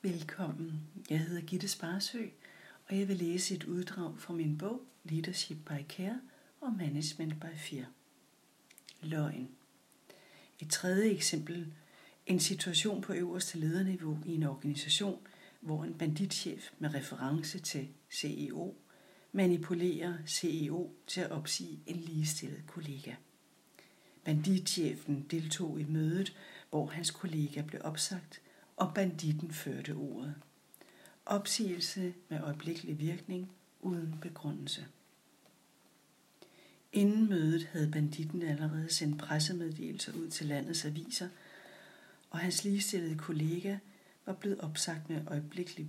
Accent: Danish